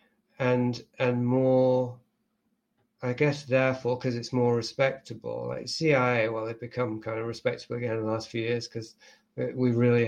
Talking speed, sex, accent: 160 wpm, male, British